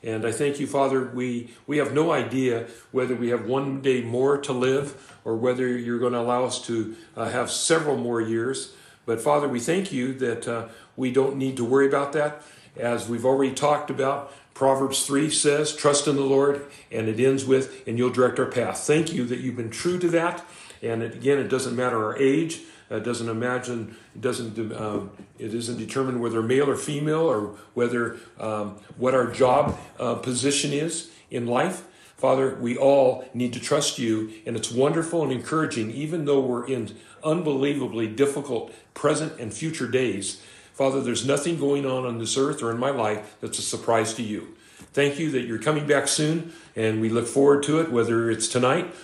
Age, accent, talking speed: 50-69, American, 195 wpm